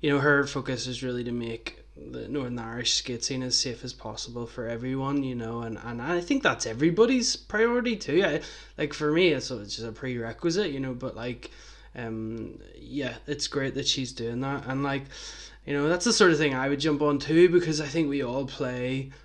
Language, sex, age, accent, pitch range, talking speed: English, male, 20-39, Irish, 130-155 Hz, 220 wpm